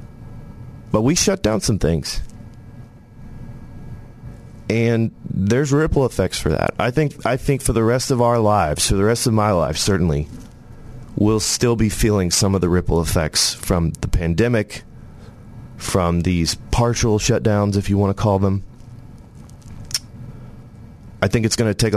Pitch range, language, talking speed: 90-115 Hz, English, 155 wpm